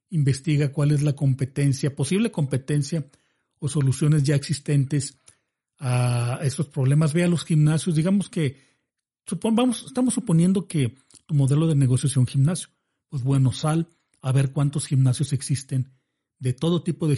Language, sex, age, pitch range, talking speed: Spanish, male, 40-59, 135-165 Hz, 155 wpm